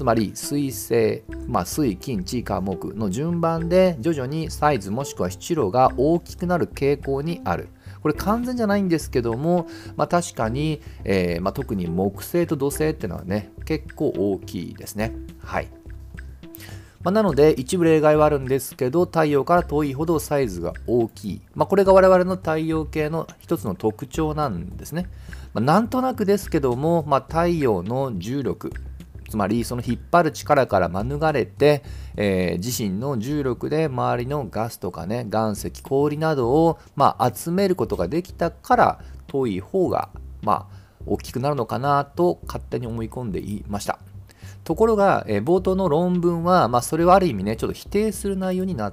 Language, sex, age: Japanese, male, 40-59